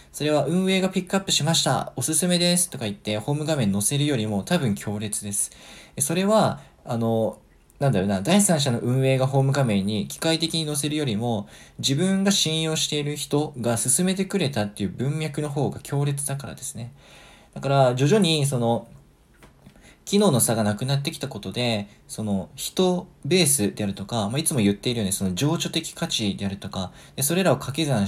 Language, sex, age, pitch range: Japanese, male, 20-39, 115-160 Hz